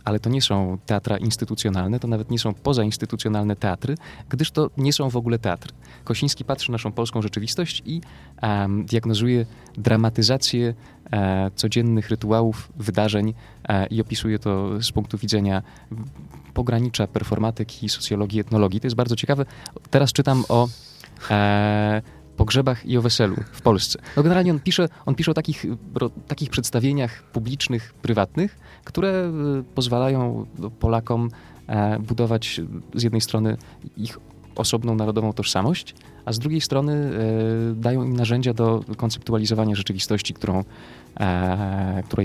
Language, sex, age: Polish, male, 20-39